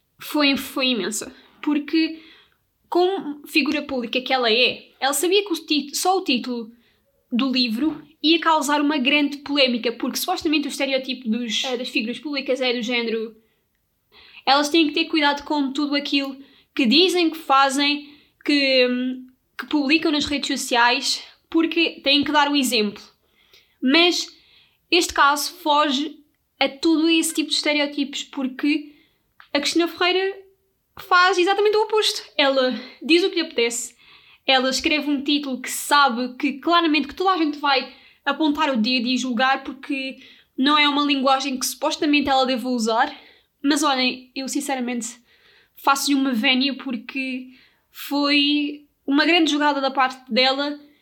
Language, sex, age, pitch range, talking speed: Portuguese, female, 20-39, 260-310 Hz, 150 wpm